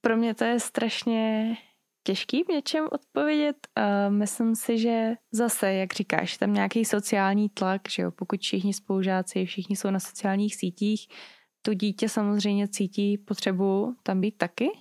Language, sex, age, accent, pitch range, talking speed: Czech, female, 20-39, native, 185-215 Hz, 155 wpm